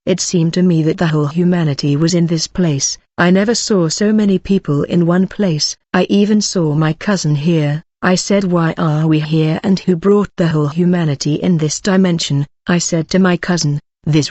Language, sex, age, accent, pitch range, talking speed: English, female, 40-59, British, 160-190 Hz, 200 wpm